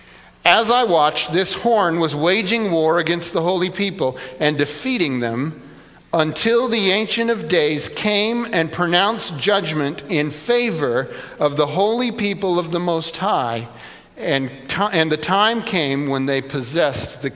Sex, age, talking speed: male, 50-69, 150 wpm